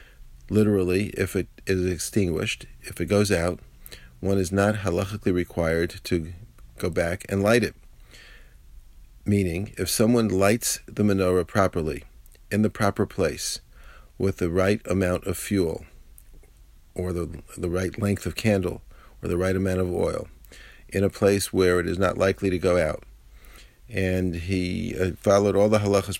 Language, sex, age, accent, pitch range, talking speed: English, male, 50-69, American, 90-105 Hz, 155 wpm